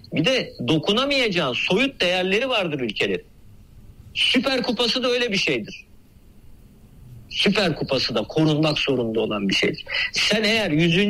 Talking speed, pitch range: 130 wpm, 145-210 Hz